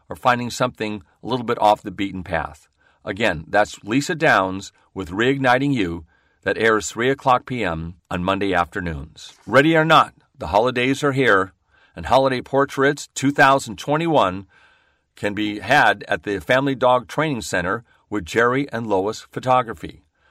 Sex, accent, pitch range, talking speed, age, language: male, American, 95-135 Hz, 150 wpm, 40-59, English